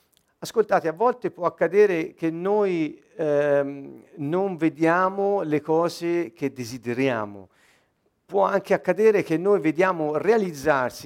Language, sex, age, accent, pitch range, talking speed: Italian, male, 50-69, native, 145-200 Hz, 115 wpm